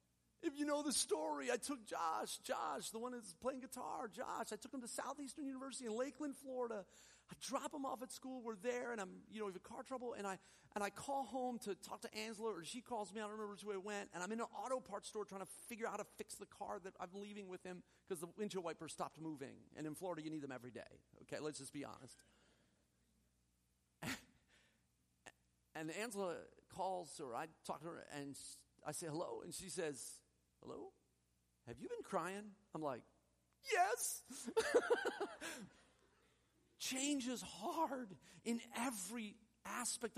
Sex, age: male, 40-59